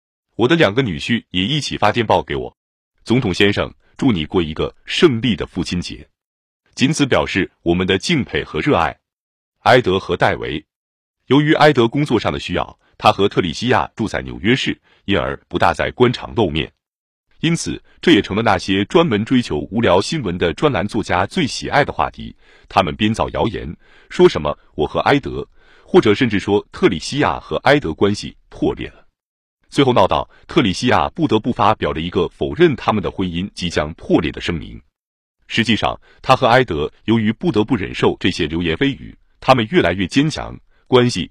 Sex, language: male, Chinese